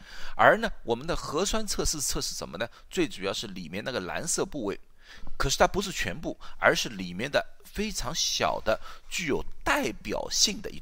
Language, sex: Chinese, male